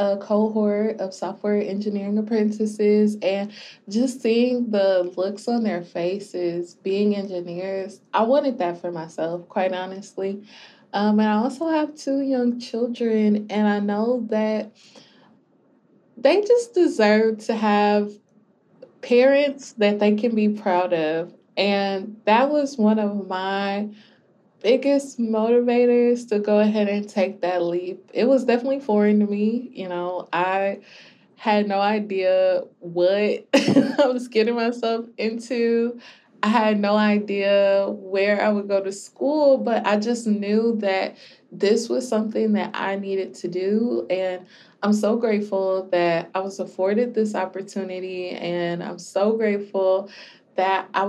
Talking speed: 140 wpm